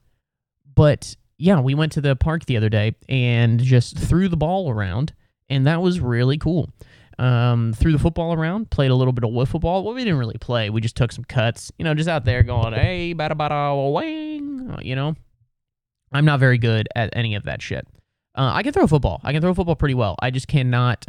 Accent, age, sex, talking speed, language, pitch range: American, 20-39, male, 220 wpm, English, 110-135 Hz